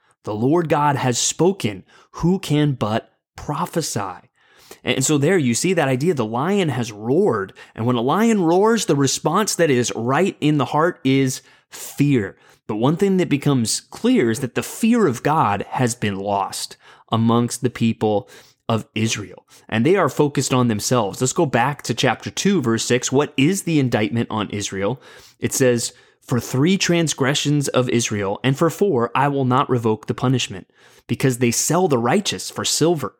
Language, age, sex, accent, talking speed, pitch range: English, 30-49, male, American, 175 wpm, 115-155 Hz